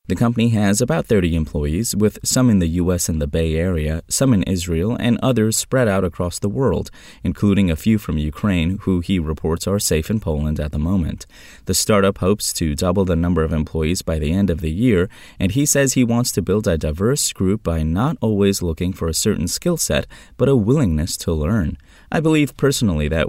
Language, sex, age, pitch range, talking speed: English, male, 20-39, 80-110 Hz, 215 wpm